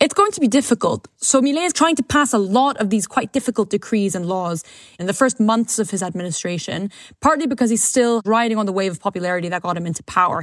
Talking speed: 240 wpm